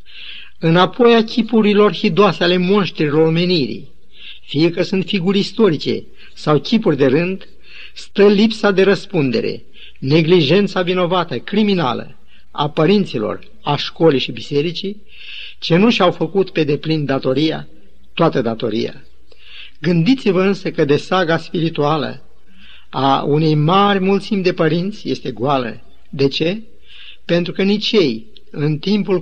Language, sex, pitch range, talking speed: Romanian, male, 145-190 Hz, 125 wpm